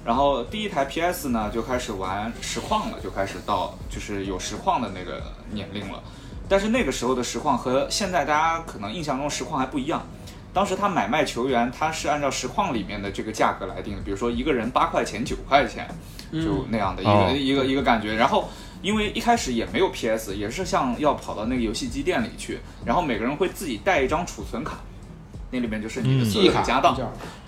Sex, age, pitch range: male, 20-39, 105-160 Hz